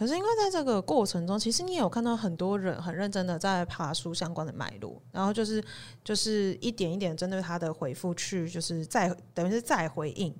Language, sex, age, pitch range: Chinese, female, 30-49, 170-225 Hz